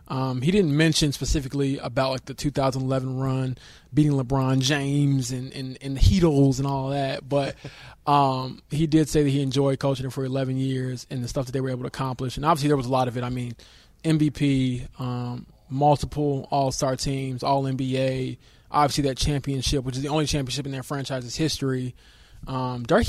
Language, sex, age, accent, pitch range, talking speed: English, male, 20-39, American, 130-150 Hz, 190 wpm